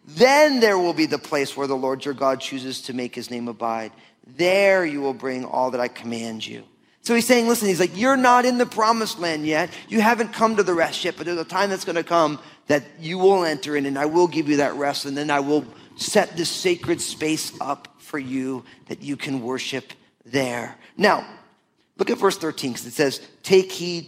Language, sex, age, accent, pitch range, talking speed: English, male, 40-59, American, 125-170 Hz, 230 wpm